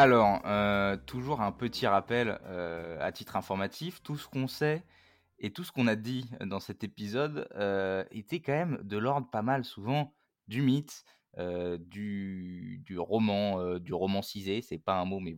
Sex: male